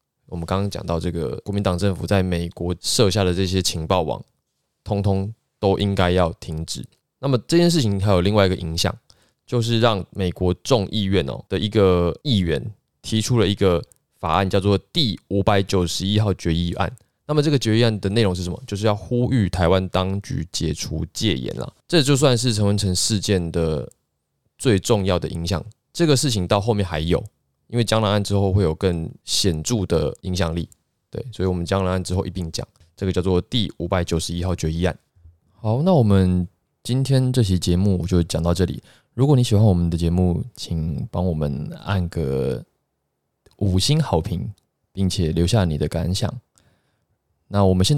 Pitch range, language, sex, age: 85-110 Hz, Chinese, male, 20-39